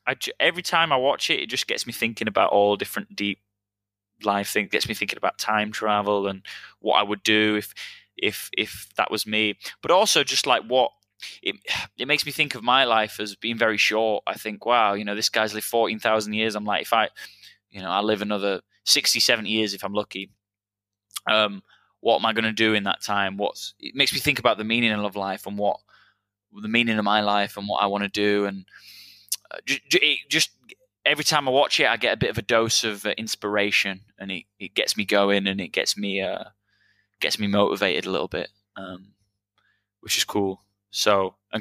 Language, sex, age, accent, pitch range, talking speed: English, male, 10-29, British, 100-110 Hz, 220 wpm